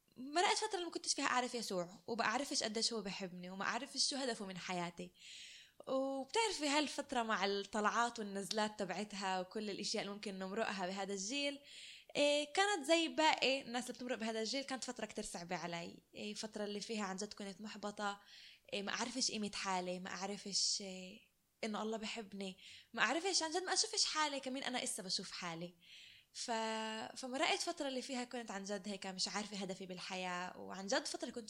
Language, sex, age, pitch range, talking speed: Arabic, female, 20-39, 195-240 Hz, 170 wpm